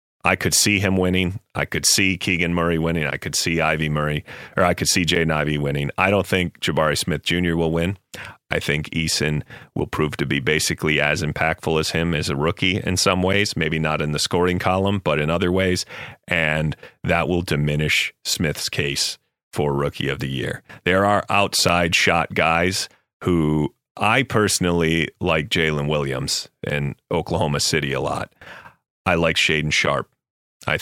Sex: male